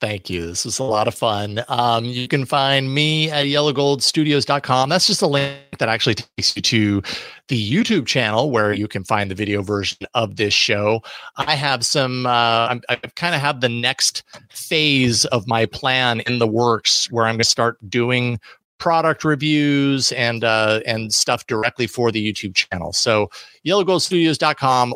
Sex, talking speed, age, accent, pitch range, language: male, 180 wpm, 30-49, American, 115-150 Hz, English